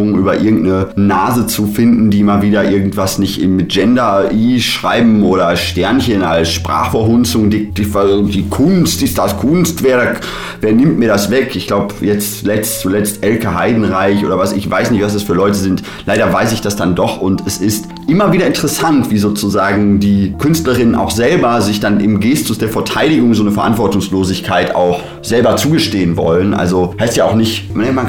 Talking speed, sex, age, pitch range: 180 wpm, male, 30-49, 95-115 Hz